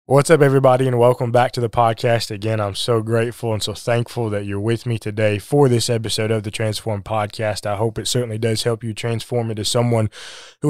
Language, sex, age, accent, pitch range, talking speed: English, male, 20-39, American, 115-135 Hz, 220 wpm